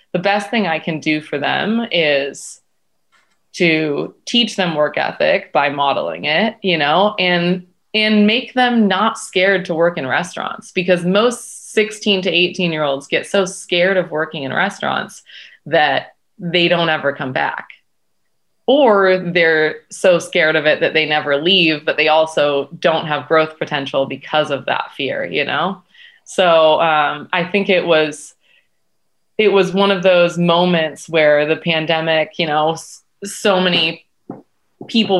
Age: 20-39